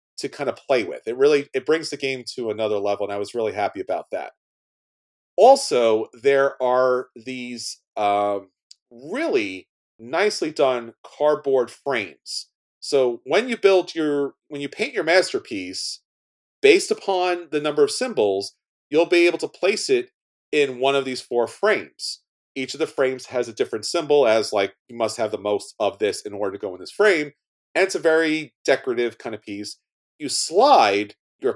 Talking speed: 180 wpm